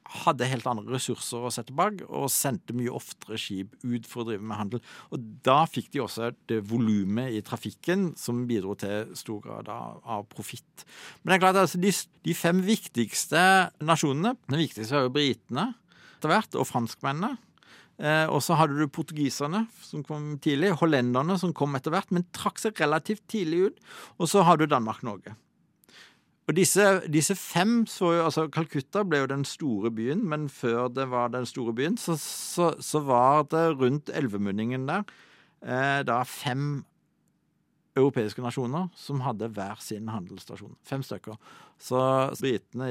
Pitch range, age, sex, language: 115-165 Hz, 50-69, male, English